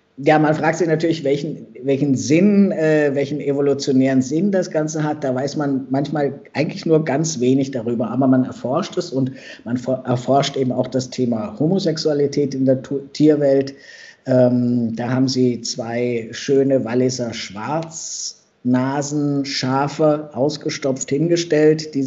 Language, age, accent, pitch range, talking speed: German, 50-69, German, 125-145 Hz, 140 wpm